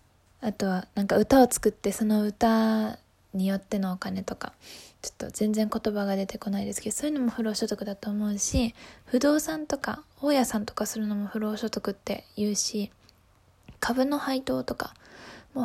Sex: female